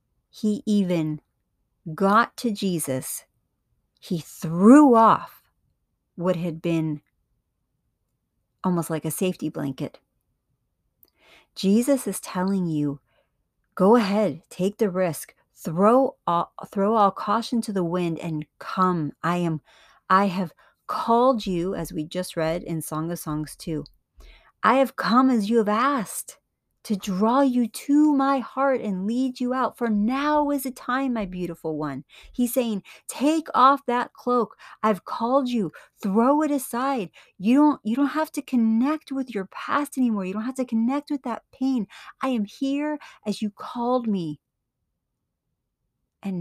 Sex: female